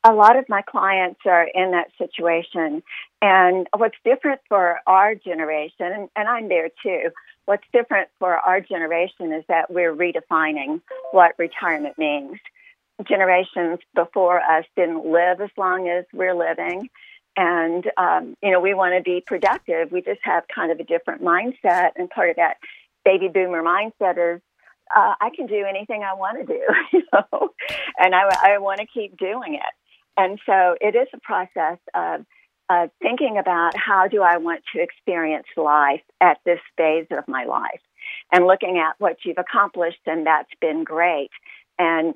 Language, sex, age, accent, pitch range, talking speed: English, female, 50-69, American, 165-200 Hz, 170 wpm